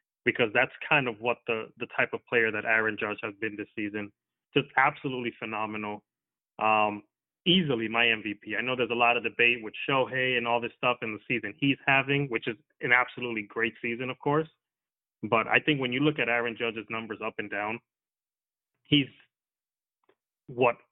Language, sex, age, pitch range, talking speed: English, male, 30-49, 115-140 Hz, 185 wpm